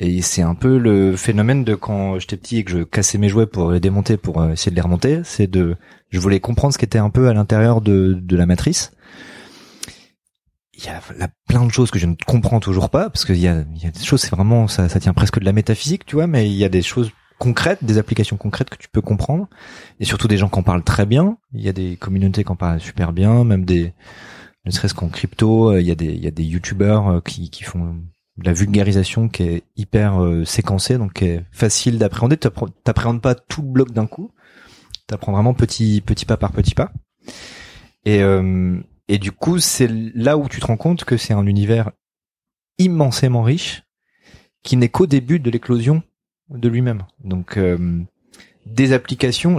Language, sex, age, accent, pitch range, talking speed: French, male, 30-49, French, 95-125 Hz, 220 wpm